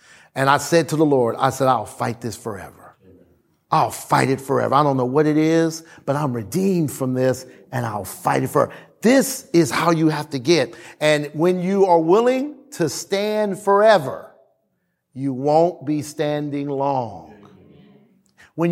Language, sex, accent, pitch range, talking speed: English, male, American, 150-235 Hz, 170 wpm